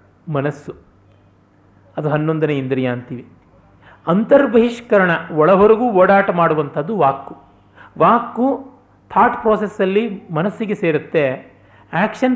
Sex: male